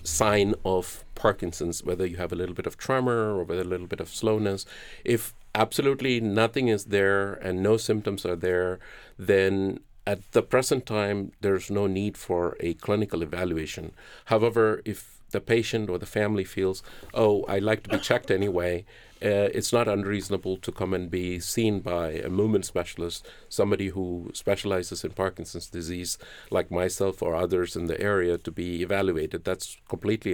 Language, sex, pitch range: English, male, 90-110 Hz